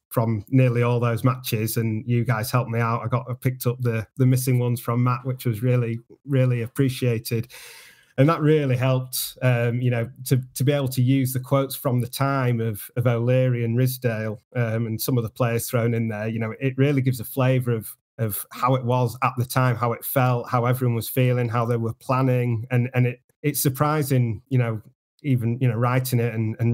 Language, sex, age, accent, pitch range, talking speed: English, male, 30-49, British, 115-130 Hz, 220 wpm